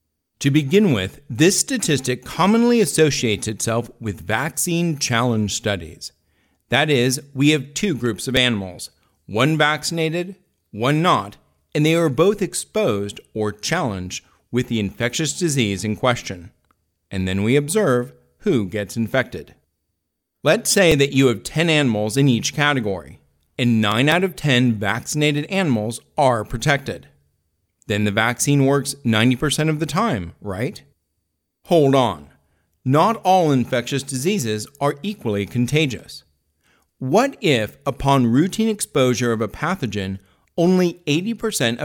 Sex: male